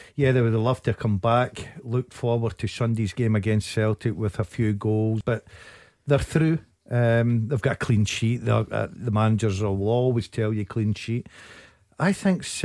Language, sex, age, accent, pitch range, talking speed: English, male, 50-69, British, 110-125 Hz, 180 wpm